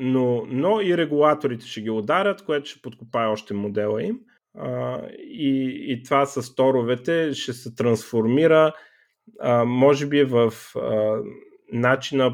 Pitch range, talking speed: 110-140 Hz, 135 wpm